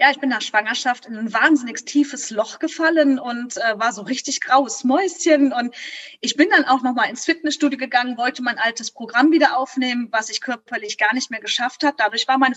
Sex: female